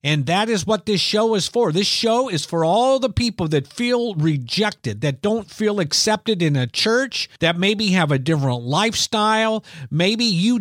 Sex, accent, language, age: male, American, English, 50-69